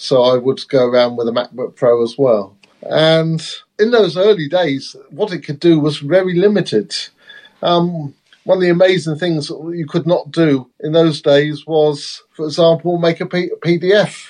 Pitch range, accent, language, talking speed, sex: 145-165 Hz, British, English, 175 wpm, male